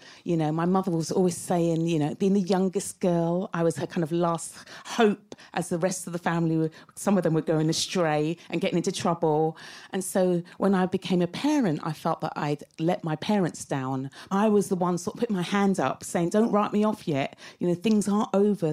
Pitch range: 155-190 Hz